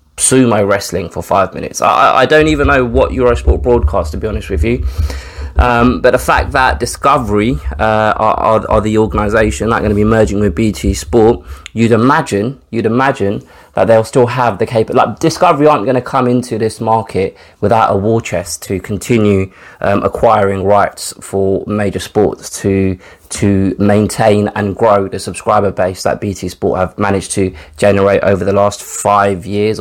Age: 20-39